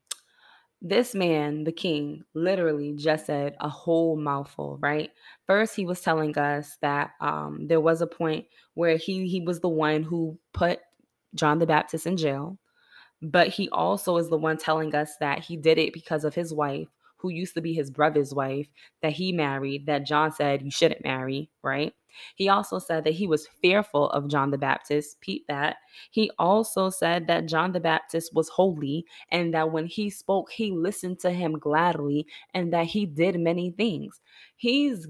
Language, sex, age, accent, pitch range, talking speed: English, female, 20-39, American, 150-180 Hz, 185 wpm